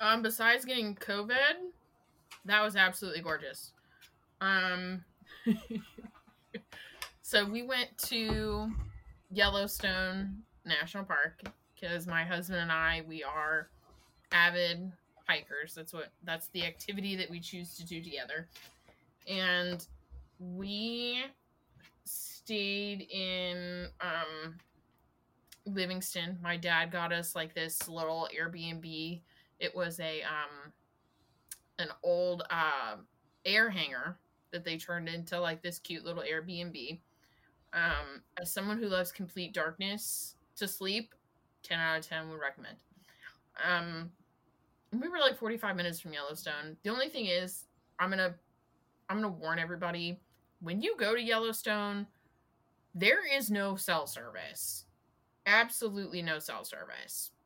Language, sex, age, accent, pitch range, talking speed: English, female, 20-39, American, 165-205 Hz, 120 wpm